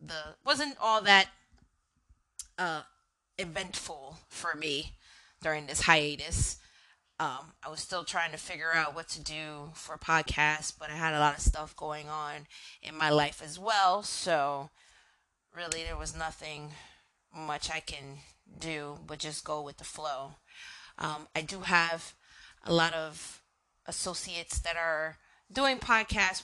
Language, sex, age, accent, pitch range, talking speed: English, female, 30-49, American, 155-190 Hz, 150 wpm